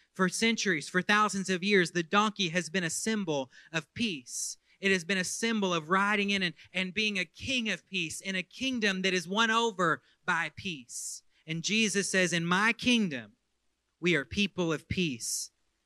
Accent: American